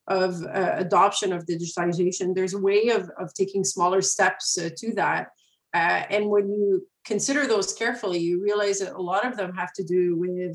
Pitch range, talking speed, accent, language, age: 180-200 Hz, 195 wpm, Canadian, English, 30-49